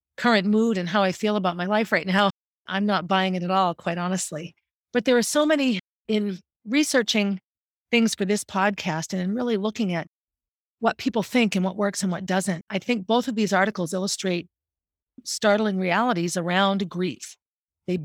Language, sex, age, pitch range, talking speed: English, female, 40-59, 180-220 Hz, 185 wpm